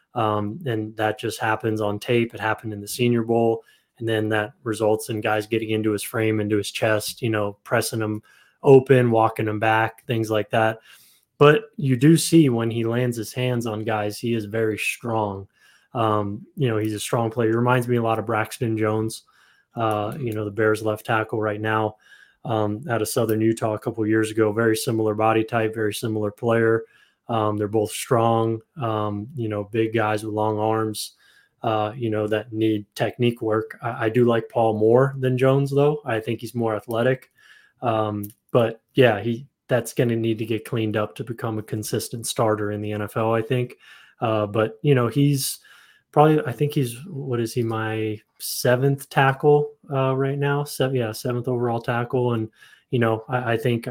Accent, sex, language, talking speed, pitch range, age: American, male, English, 200 wpm, 110-120 Hz, 20-39